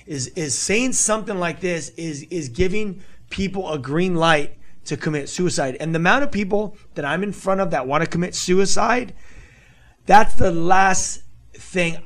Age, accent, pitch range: 30-49, American, 150-195 Hz